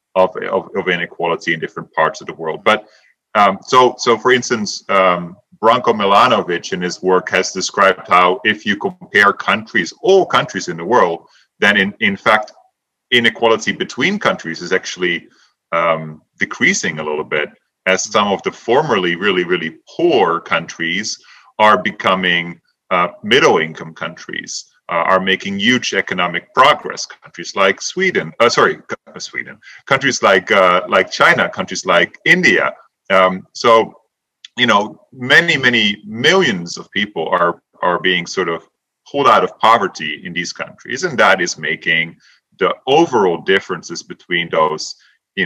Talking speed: 145 wpm